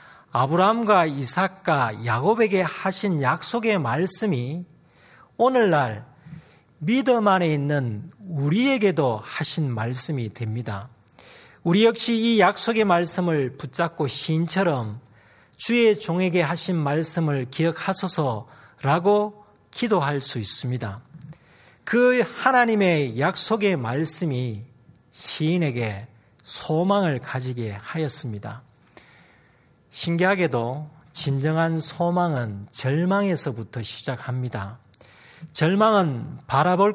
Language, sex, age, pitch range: Korean, male, 40-59, 125-185 Hz